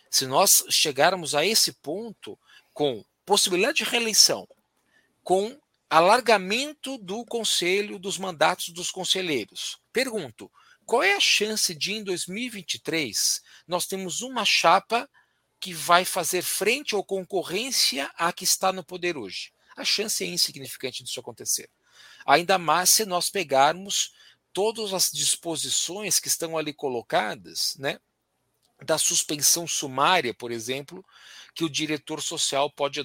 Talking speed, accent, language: 130 wpm, Brazilian, Portuguese